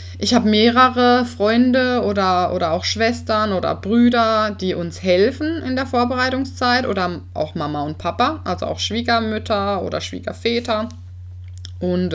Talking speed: 135 wpm